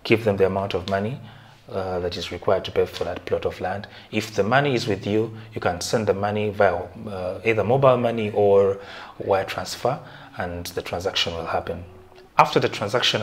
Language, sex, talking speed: English, male, 200 wpm